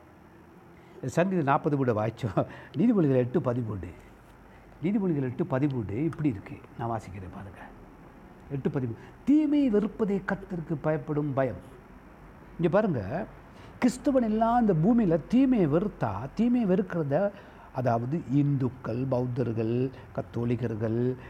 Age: 60-79